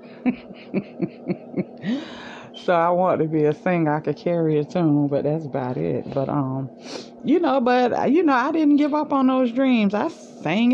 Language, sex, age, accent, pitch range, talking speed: English, female, 30-49, American, 160-230 Hz, 180 wpm